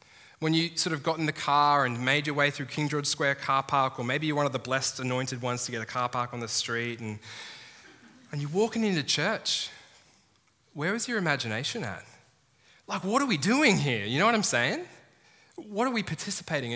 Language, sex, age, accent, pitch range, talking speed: English, male, 10-29, Australian, 115-150 Hz, 220 wpm